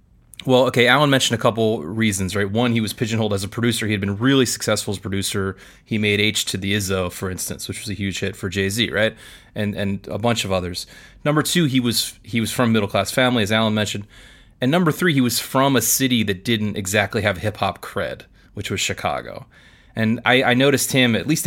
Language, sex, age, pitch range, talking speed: English, male, 30-49, 100-120 Hz, 225 wpm